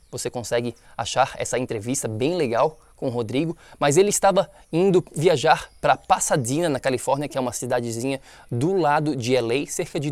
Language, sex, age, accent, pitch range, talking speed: Portuguese, male, 20-39, Brazilian, 125-160 Hz, 170 wpm